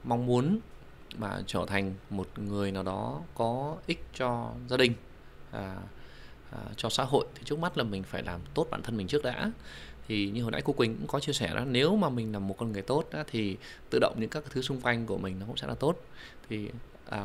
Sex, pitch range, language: male, 100-125 Hz, Vietnamese